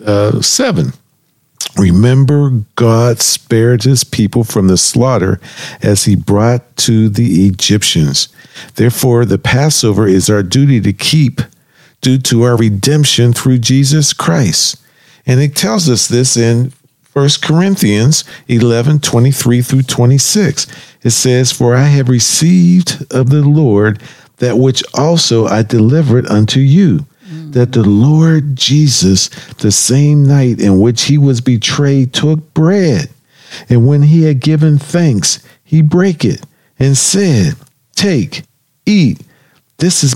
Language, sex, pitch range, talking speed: English, male, 115-150 Hz, 135 wpm